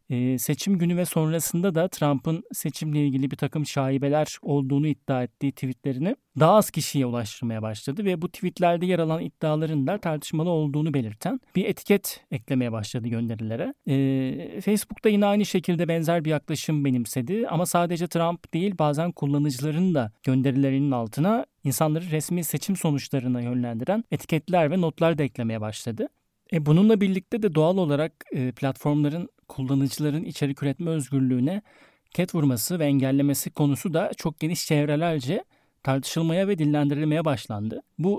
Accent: native